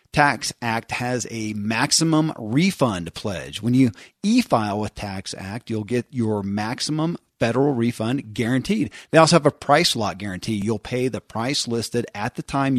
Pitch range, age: 115-150 Hz, 40-59